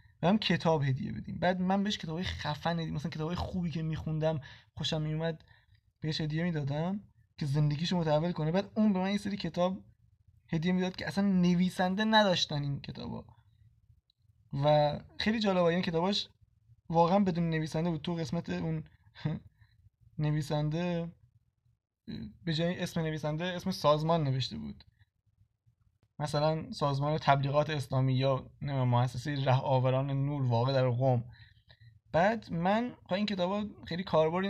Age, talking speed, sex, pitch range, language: 20-39, 145 wpm, male, 130-170 Hz, Persian